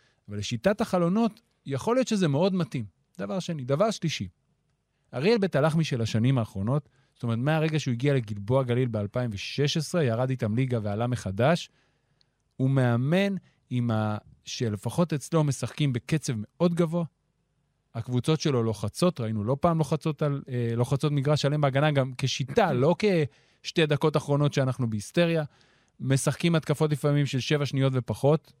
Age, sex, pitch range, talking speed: 30-49, male, 120-155 Hz, 145 wpm